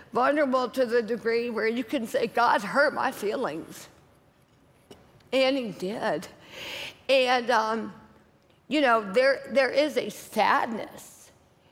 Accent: American